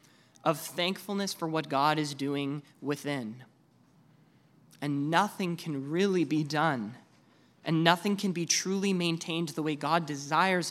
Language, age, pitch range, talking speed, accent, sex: English, 20-39, 135-180 Hz, 135 wpm, American, male